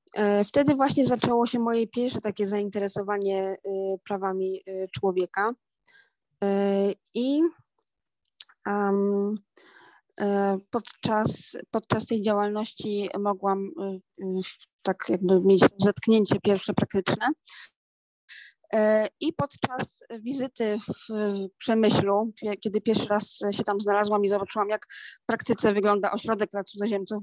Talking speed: 95 wpm